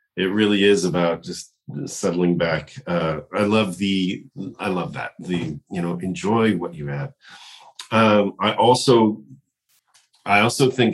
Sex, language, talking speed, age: male, English, 145 wpm, 40-59